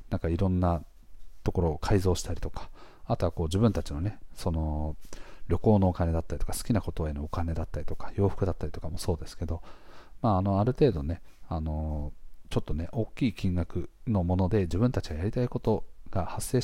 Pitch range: 85-110 Hz